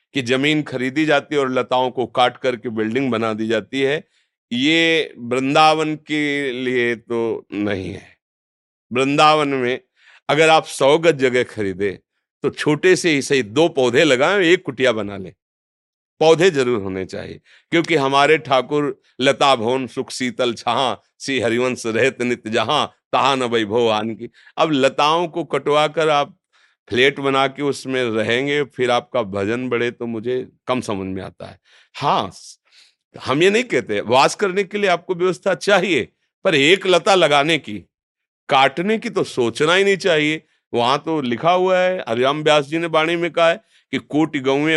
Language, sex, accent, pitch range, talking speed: Hindi, male, native, 115-155 Hz, 165 wpm